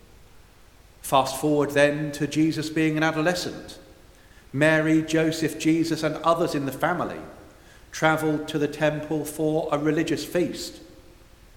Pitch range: 130-155 Hz